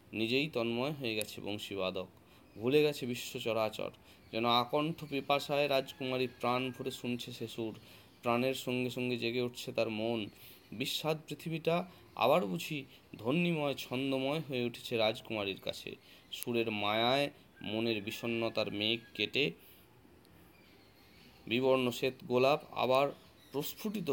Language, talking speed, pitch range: Bengali, 110 wpm, 110-135 Hz